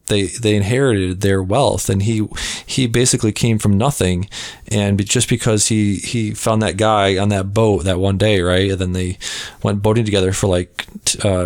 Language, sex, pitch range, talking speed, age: English, male, 100-115 Hz, 190 wpm, 20-39